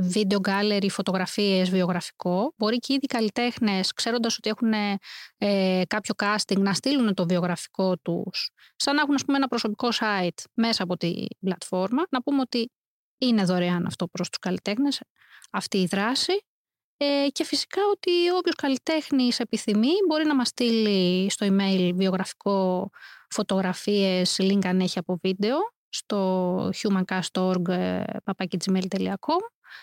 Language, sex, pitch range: Greek, female, 190-275 Hz